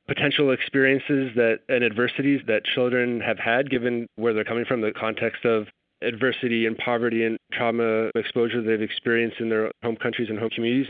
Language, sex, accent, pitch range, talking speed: English, male, American, 115-130 Hz, 175 wpm